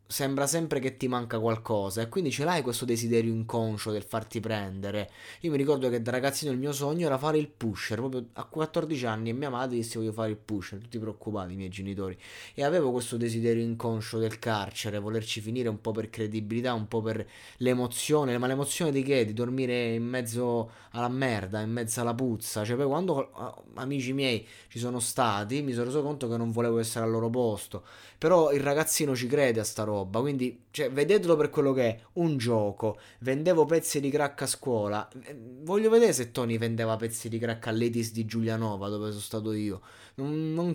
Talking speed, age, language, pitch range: 200 wpm, 20-39, Italian, 110-135 Hz